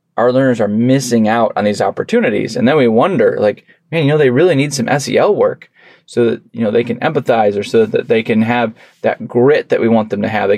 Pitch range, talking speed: 115-150 Hz, 250 wpm